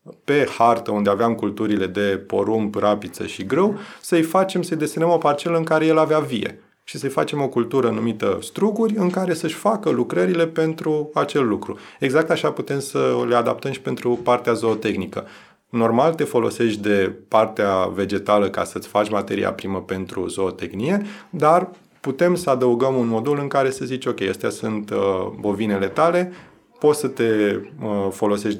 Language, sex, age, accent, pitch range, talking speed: Romanian, male, 30-49, native, 105-140 Hz, 165 wpm